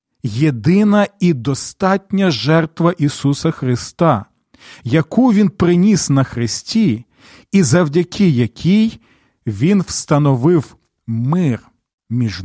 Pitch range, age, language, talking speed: 125-180 Hz, 40-59, Ukrainian, 85 wpm